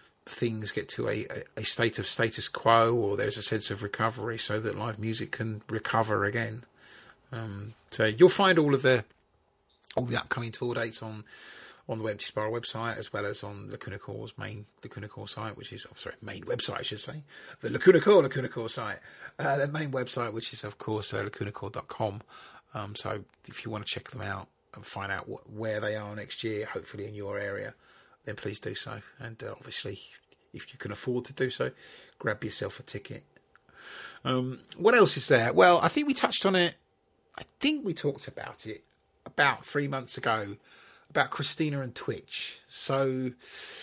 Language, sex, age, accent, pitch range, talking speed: English, male, 30-49, British, 110-140 Hz, 195 wpm